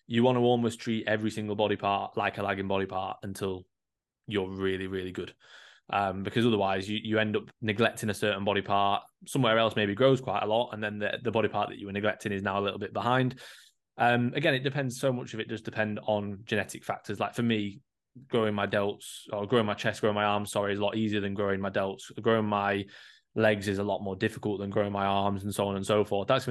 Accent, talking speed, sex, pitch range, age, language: British, 245 wpm, male, 100-110 Hz, 20-39, English